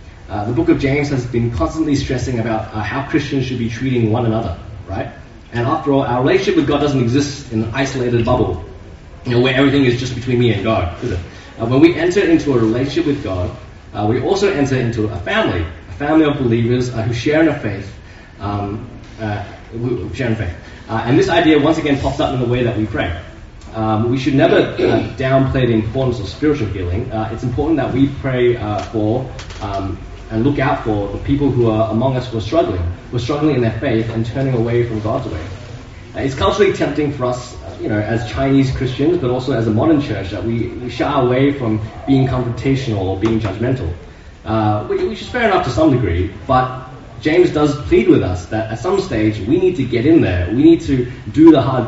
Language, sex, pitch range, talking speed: English, male, 105-135 Hz, 220 wpm